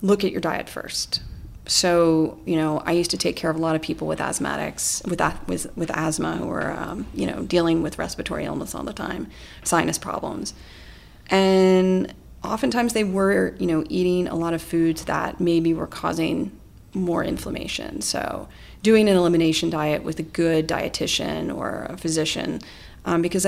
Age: 30-49